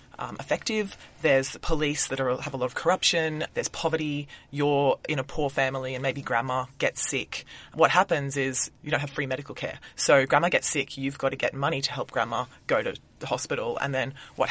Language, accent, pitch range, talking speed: English, Australian, 130-155 Hz, 205 wpm